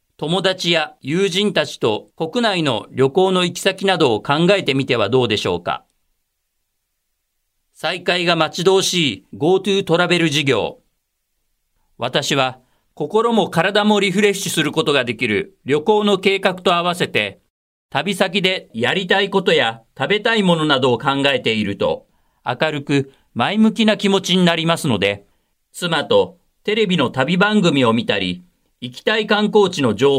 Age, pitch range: 40-59, 120-195 Hz